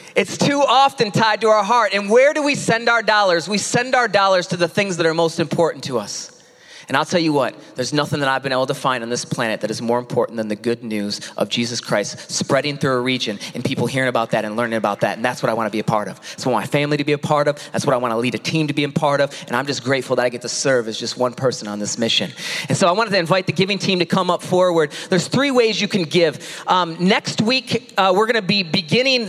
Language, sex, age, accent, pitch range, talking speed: English, male, 30-49, American, 150-215 Hz, 295 wpm